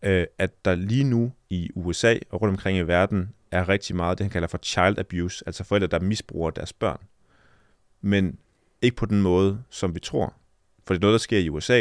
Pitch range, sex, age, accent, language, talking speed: 95-110 Hz, male, 30-49, native, Danish, 215 wpm